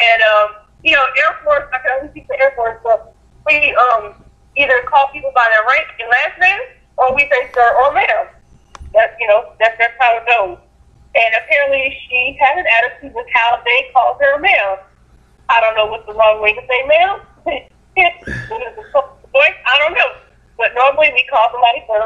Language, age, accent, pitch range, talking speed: English, 30-49, American, 215-285 Hz, 195 wpm